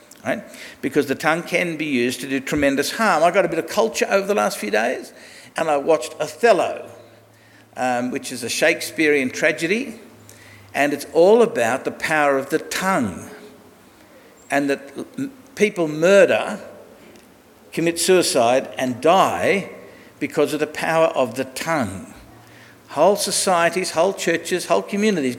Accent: Australian